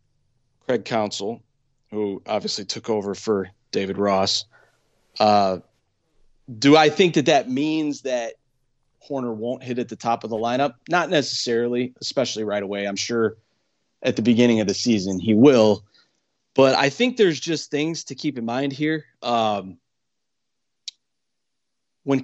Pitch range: 110-140 Hz